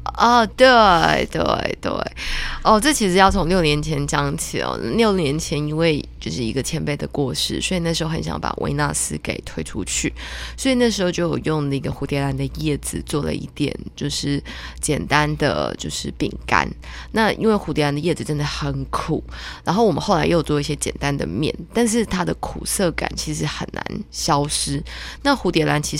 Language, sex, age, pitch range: Chinese, female, 20-39, 140-175 Hz